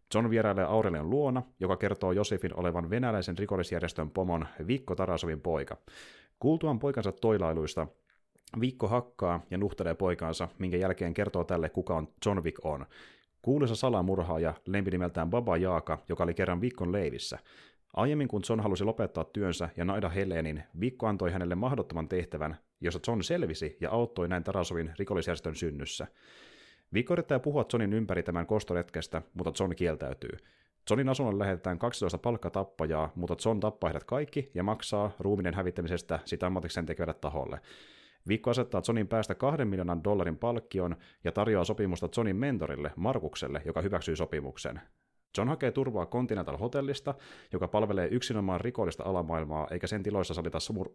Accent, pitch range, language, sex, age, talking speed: native, 85-110 Hz, Finnish, male, 30-49, 145 wpm